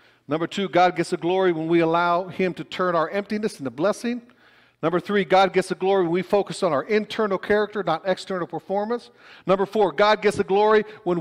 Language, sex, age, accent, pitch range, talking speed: English, male, 50-69, American, 145-210 Hz, 210 wpm